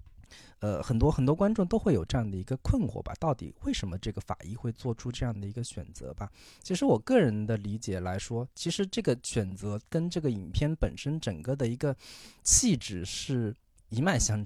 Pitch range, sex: 100-145 Hz, male